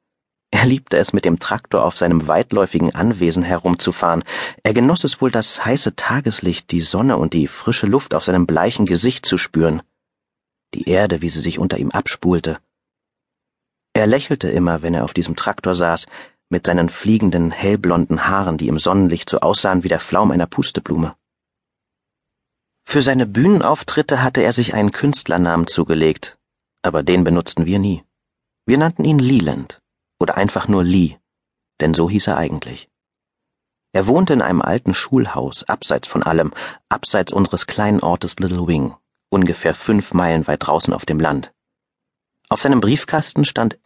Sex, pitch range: male, 85-105 Hz